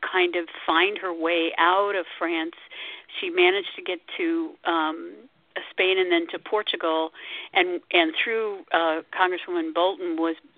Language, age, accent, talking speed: English, 50-69, American, 145 wpm